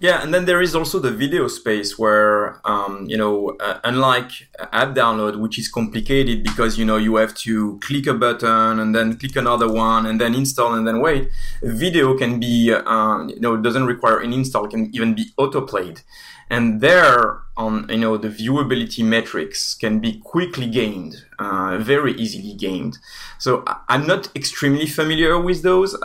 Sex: male